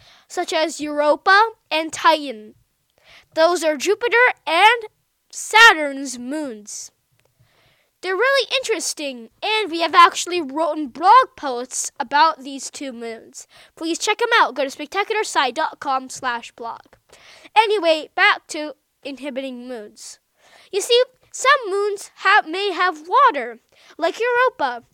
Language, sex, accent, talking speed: English, female, American, 115 wpm